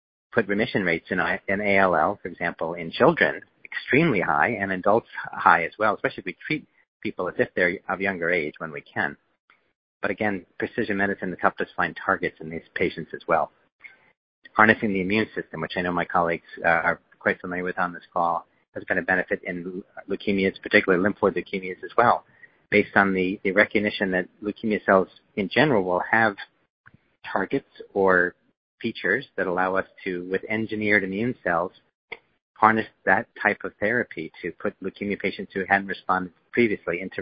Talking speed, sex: 175 wpm, male